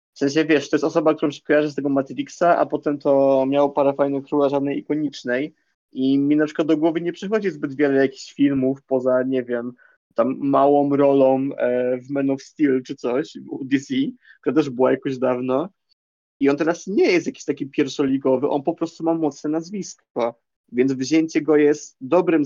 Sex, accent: male, native